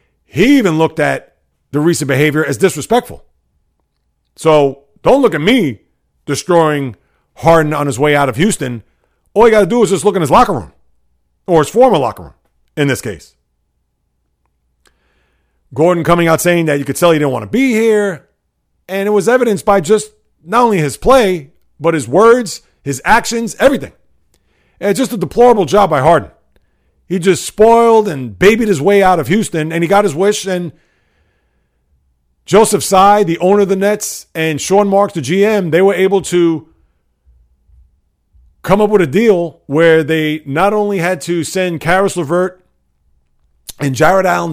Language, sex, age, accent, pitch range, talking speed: English, male, 40-59, American, 130-195 Hz, 170 wpm